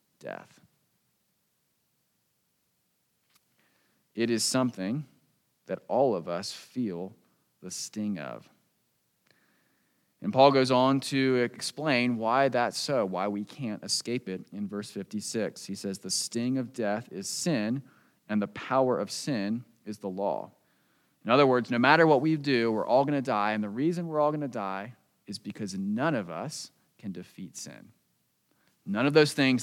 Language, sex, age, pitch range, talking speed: English, male, 30-49, 100-130 Hz, 160 wpm